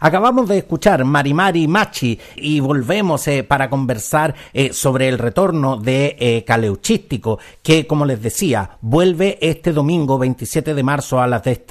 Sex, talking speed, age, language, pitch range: male, 155 wpm, 50-69, Spanish, 120-160 Hz